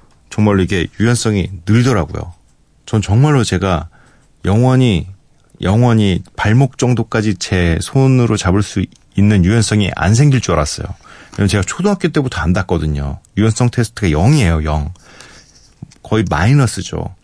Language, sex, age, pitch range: Korean, male, 40-59, 85-125 Hz